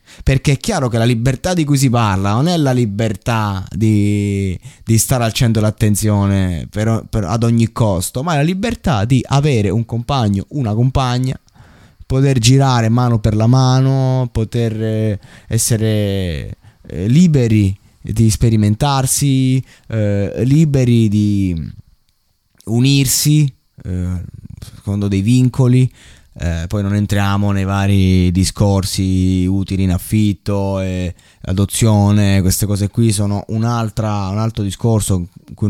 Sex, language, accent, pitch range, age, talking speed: male, Italian, native, 100-125 Hz, 20-39, 125 wpm